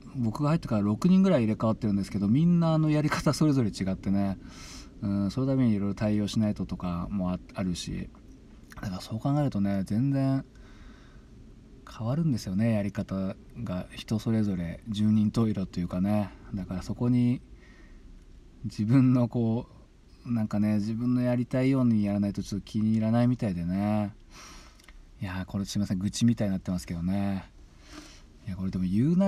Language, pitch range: Japanese, 95-130 Hz